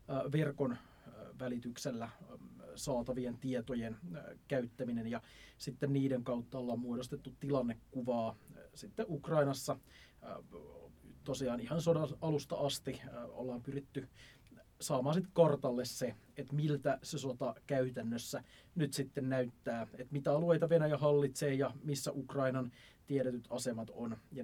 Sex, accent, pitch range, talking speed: male, native, 125-150 Hz, 110 wpm